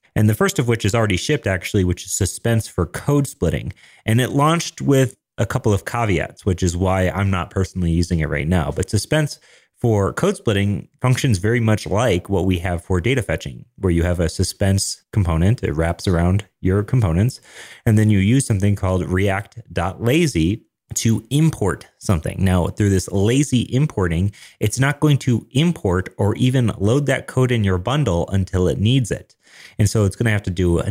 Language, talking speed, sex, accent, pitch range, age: English, 195 wpm, male, American, 95-125 Hz, 30-49